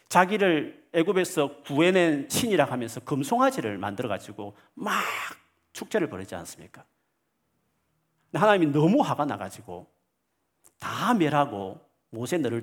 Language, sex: Korean, male